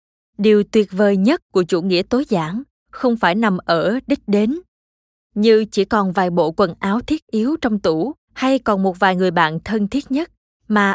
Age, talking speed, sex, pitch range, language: 20-39, 195 wpm, female, 185-235 Hz, Vietnamese